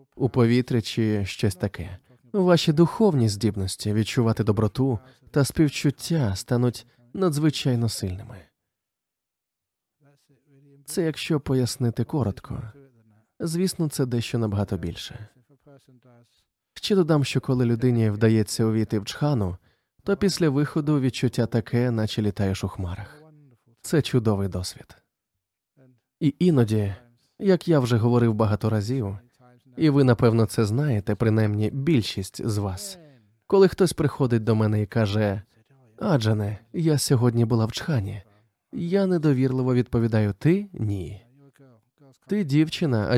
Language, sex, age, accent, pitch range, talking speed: Ukrainian, male, 20-39, native, 110-145 Hz, 120 wpm